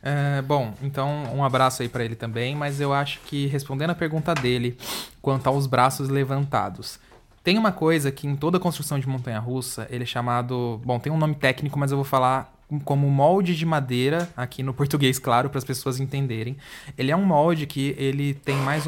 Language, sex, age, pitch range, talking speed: Portuguese, male, 20-39, 135-170 Hz, 195 wpm